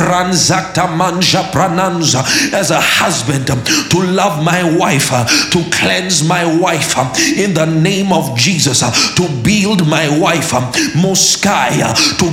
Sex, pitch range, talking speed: male, 160-190 Hz, 100 wpm